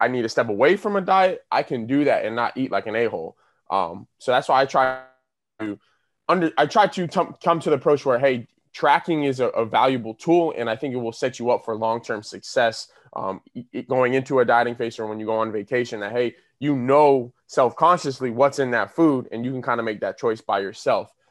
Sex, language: male, English